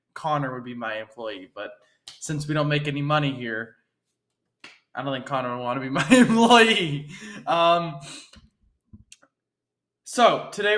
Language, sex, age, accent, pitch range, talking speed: English, male, 20-39, American, 140-200 Hz, 145 wpm